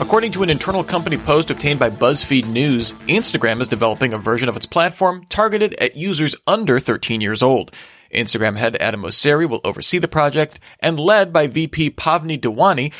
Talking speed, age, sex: 180 wpm, 30-49, male